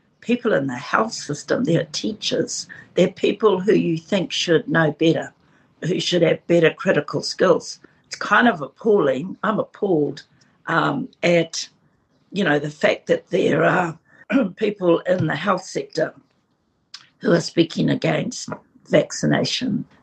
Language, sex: English, female